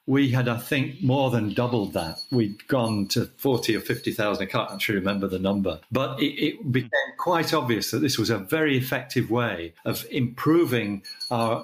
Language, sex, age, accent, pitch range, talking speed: English, male, 50-69, British, 115-135 Hz, 190 wpm